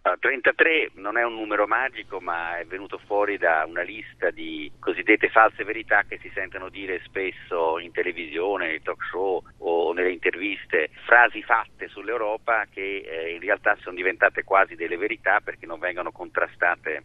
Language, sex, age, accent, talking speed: Italian, male, 40-59, native, 160 wpm